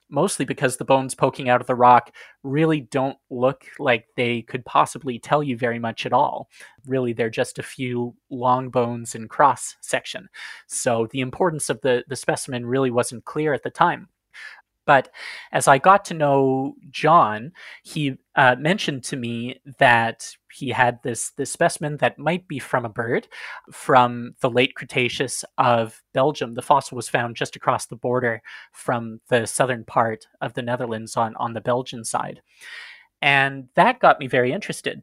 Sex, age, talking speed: male, 30-49, 175 wpm